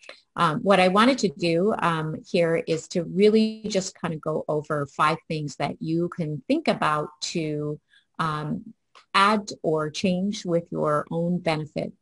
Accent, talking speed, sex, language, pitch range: American, 160 wpm, female, English, 150-185 Hz